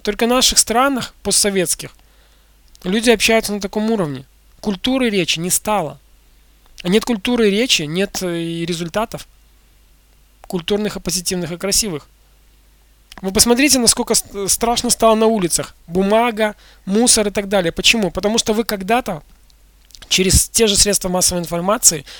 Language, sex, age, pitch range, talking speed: Russian, male, 20-39, 175-220 Hz, 135 wpm